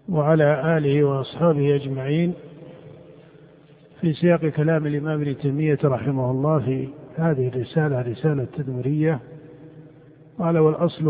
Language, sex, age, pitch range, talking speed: Arabic, male, 50-69, 145-175 Hz, 105 wpm